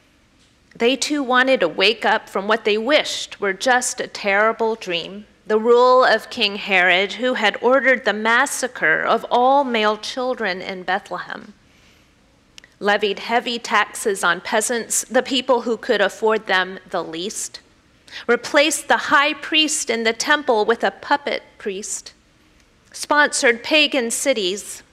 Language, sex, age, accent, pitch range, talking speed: English, female, 40-59, American, 210-275 Hz, 140 wpm